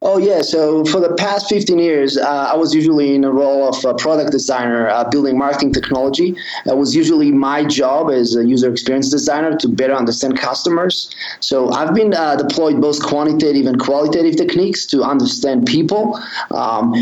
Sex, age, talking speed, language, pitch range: male, 30-49, 180 wpm, English, 135-195 Hz